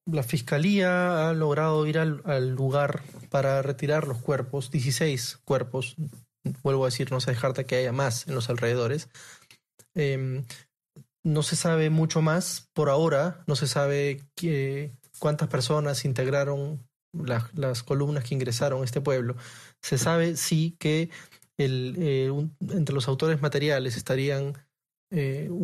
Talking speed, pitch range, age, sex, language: 145 wpm, 130-150 Hz, 20-39, male, Spanish